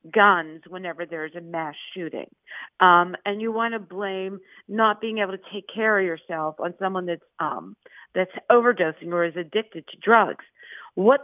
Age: 50-69